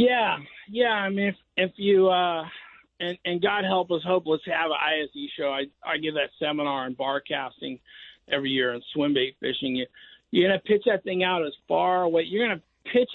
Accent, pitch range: American, 140-180 Hz